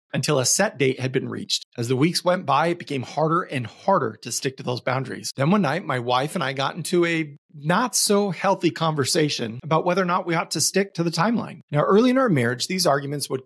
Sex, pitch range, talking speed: male, 130-180 Hz, 235 wpm